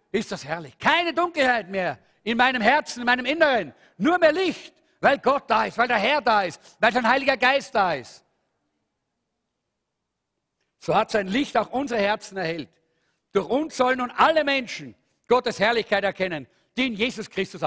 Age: 50-69